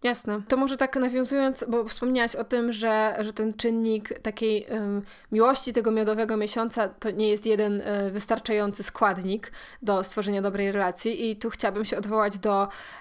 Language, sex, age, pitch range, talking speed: Polish, female, 20-39, 200-235 Hz, 155 wpm